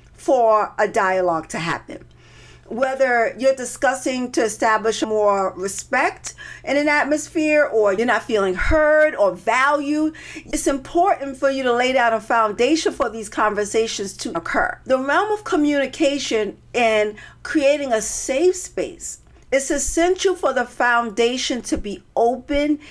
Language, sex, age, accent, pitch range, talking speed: English, female, 50-69, American, 220-305 Hz, 140 wpm